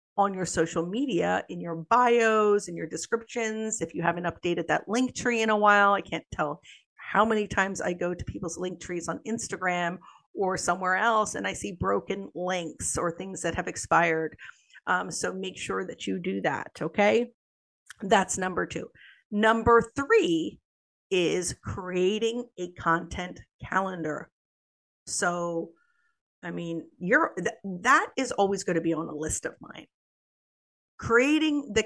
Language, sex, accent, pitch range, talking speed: English, female, American, 170-225 Hz, 155 wpm